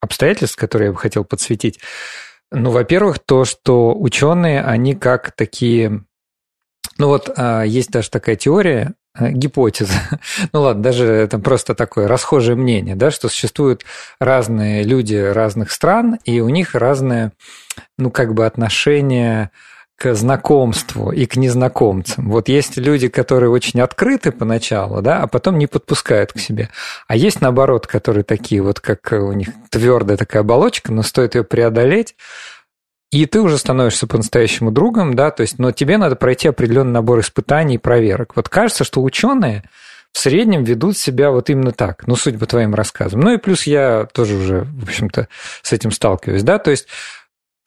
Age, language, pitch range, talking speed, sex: 40-59, Russian, 110-140 Hz, 160 wpm, male